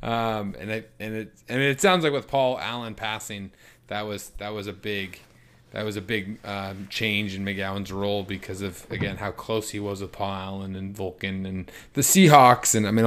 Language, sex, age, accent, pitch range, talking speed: English, male, 20-39, American, 105-135 Hz, 215 wpm